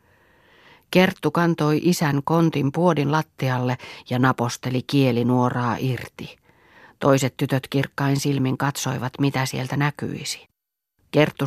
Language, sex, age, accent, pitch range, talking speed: Finnish, female, 40-59, native, 130-200 Hz, 105 wpm